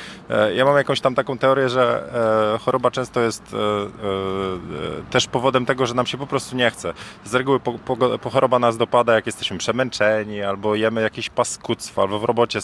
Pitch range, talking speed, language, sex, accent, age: 105-130 Hz, 195 wpm, Polish, male, native, 20-39